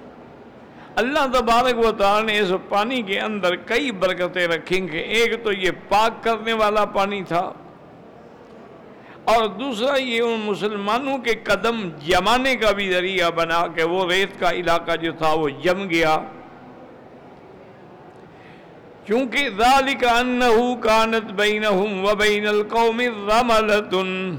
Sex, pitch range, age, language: male, 180-225 Hz, 60-79, English